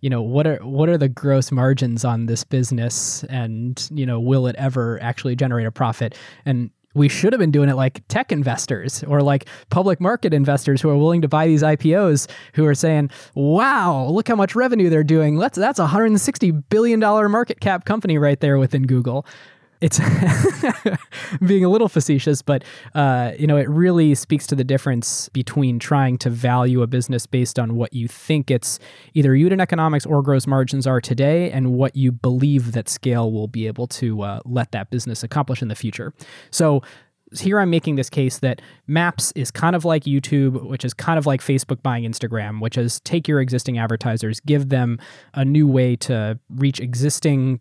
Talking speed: 195 wpm